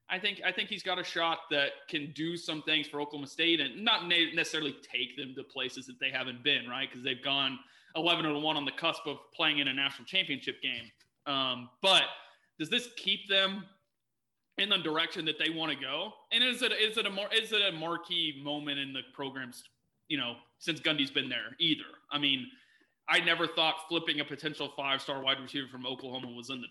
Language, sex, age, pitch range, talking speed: English, male, 20-39, 135-170 Hz, 220 wpm